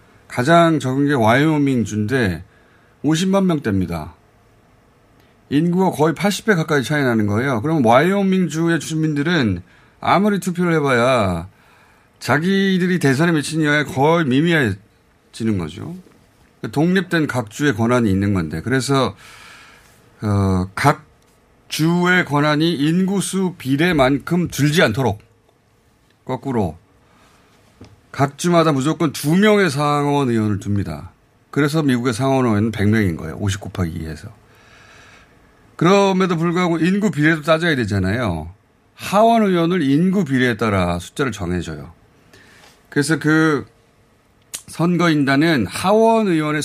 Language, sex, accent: Korean, male, native